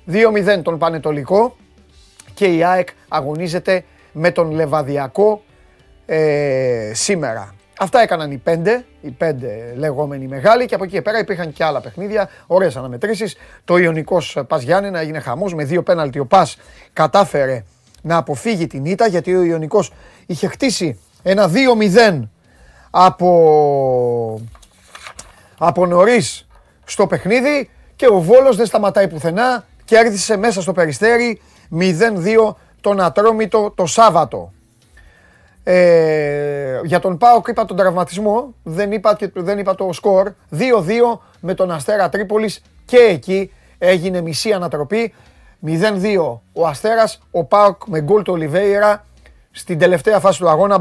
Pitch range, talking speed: 150-205 Hz, 130 wpm